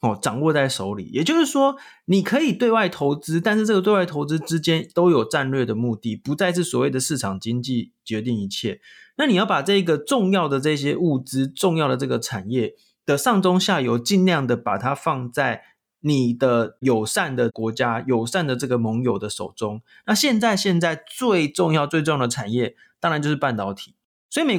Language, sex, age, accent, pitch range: Chinese, male, 20-39, native, 120-180 Hz